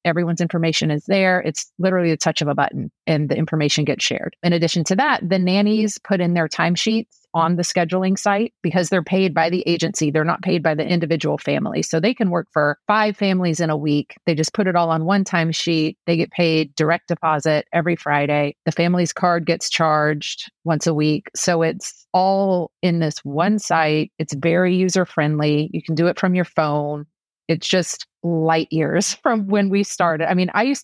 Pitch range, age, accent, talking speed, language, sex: 160-195 Hz, 30-49, American, 205 wpm, English, female